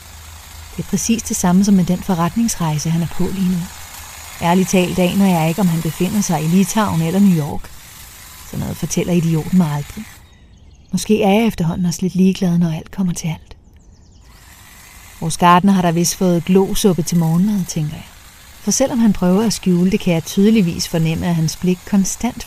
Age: 30-49